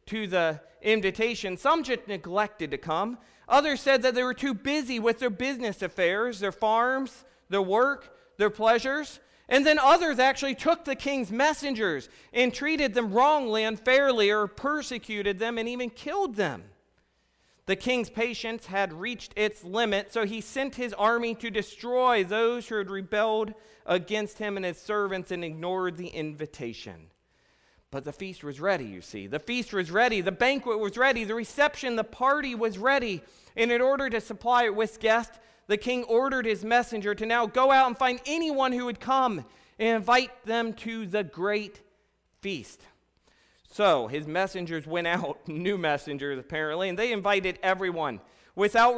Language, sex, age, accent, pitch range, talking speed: English, male, 40-59, American, 200-245 Hz, 165 wpm